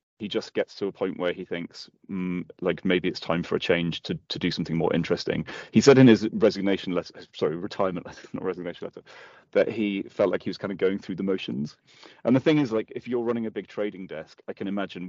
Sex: male